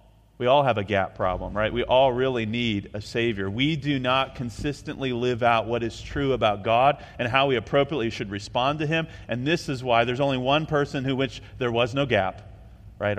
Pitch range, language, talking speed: 105-140 Hz, English, 215 wpm